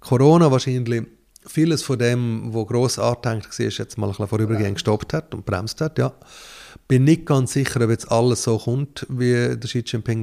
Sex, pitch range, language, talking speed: male, 110-130 Hz, German, 200 wpm